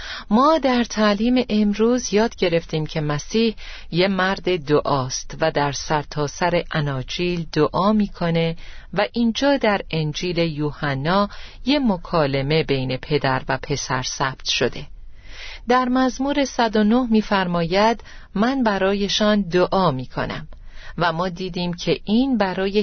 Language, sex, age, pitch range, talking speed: Persian, female, 40-59, 150-220 Hz, 120 wpm